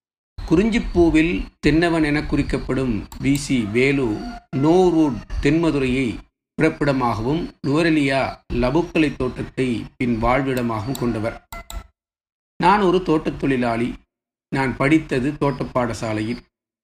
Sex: male